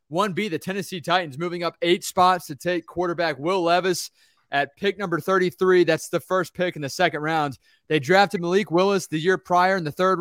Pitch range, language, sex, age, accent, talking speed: 160-185 Hz, English, male, 20-39, American, 205 wpm